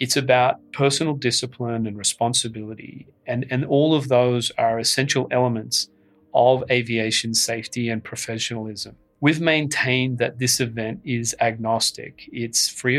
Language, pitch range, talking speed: English, 115-130 Hz, 130 wpm